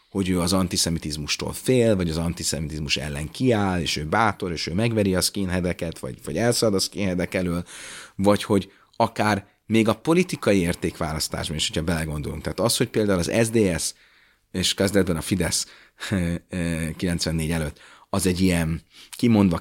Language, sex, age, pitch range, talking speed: Hungarian, male, 30-49, 85-105 Hz, 155 wpm